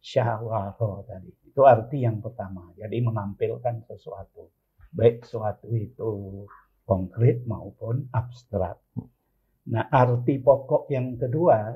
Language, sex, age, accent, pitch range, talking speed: Indonesian, male, 50-69, native, 105-130 Hz, 100 wpm